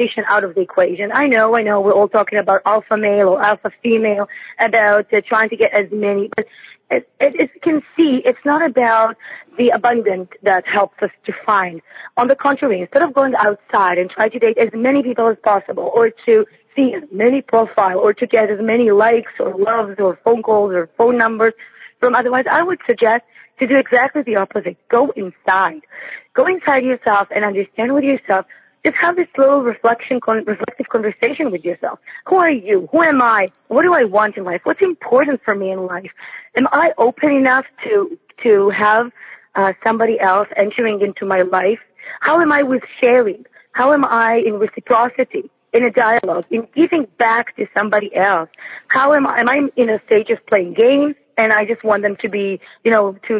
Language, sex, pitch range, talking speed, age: English, female, 205-270 Hz, 200 wpm, 20-39